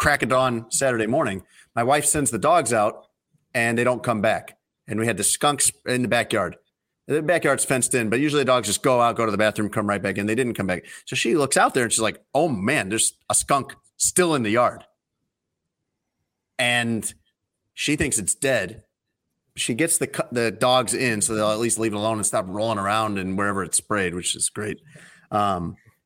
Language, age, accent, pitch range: English, 30-49, American, 105-125 Hz